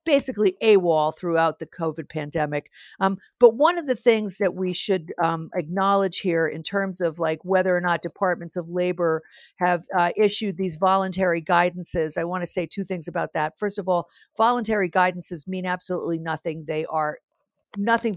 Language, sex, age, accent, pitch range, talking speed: English, female, 50-69, American, 180-230 Hz, 180 wpm